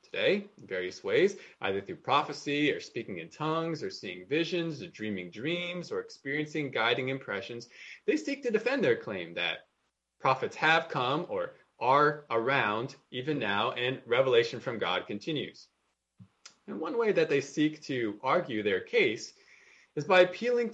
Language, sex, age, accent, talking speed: English, male, 20-39, American, 155 wpm